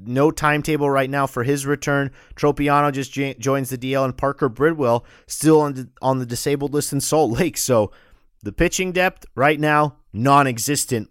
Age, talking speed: 30-49, 180 wpm